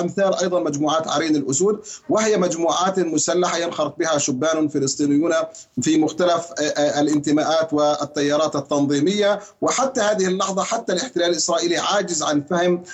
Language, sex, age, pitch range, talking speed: Arabic, male, 40-59, 160-195 Hz, 120 wpm